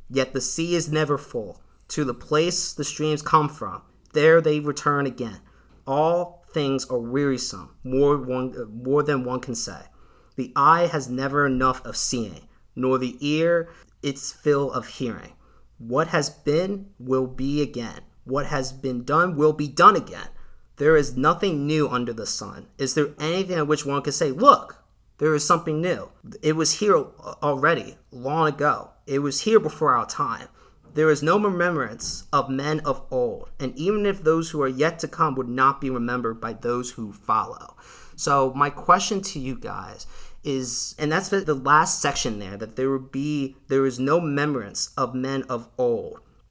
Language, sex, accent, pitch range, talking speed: English, male, American, 130-155 Hz, 180 wpm